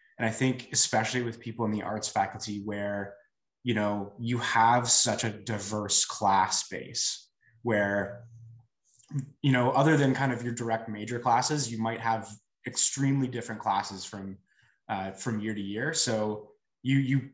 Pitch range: 105-125 Hz